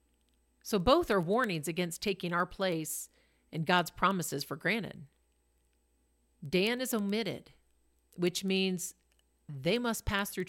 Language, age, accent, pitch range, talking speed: English, 50-69, American, 155-255 Hz, 125 wpm